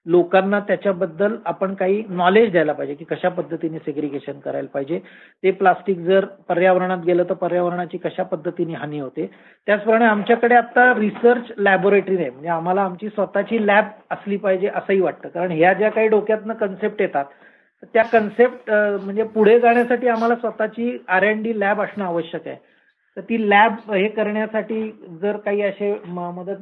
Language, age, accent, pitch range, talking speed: Marathi, 40-59, native, 185-225 Hz, 155 wpm